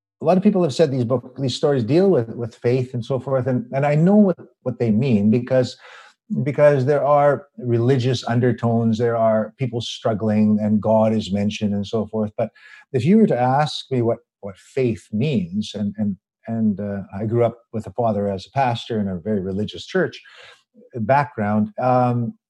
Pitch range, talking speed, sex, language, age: 110-140 Hz, 195 wpm, male, English, 50-69